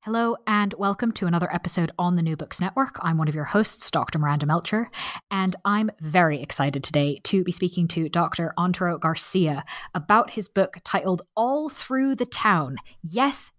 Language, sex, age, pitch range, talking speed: English, female, 20-39, 165-225 Hz, 175 wpm